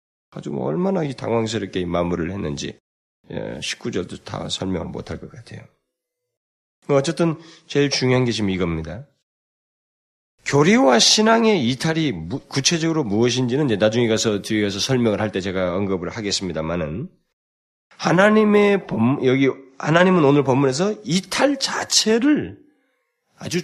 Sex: male